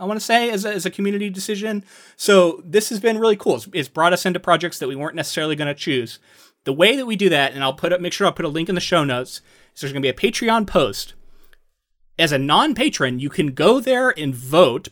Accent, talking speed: American, 265 wpm